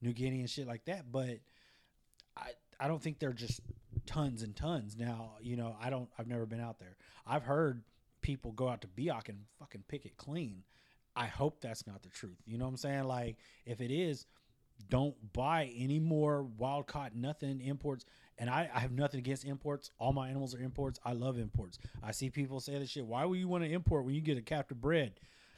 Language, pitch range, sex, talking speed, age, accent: English, 115-140 Hz, male, 220 wpm, 30-49, American